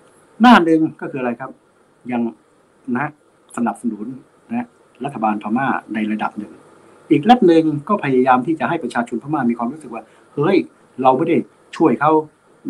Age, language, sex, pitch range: 60-79, Thai, male, 110-140 Hz